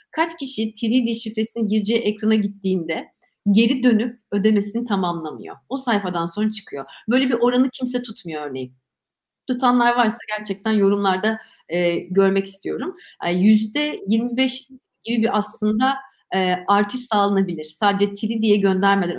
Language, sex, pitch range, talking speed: Turkish, female, 195-245 Hz, 125 wpm